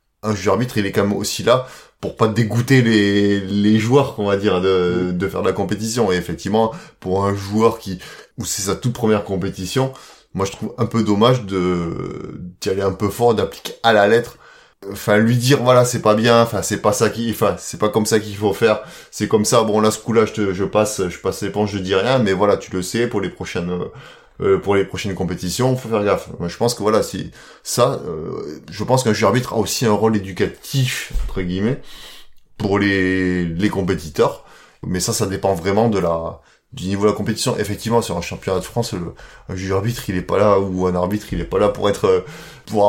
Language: French